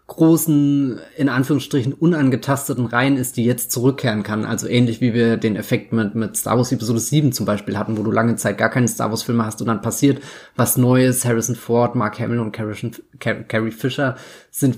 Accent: German